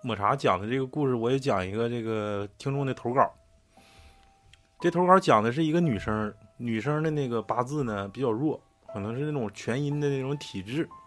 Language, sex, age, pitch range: Chinese, male, 20-39, 115-150 Hz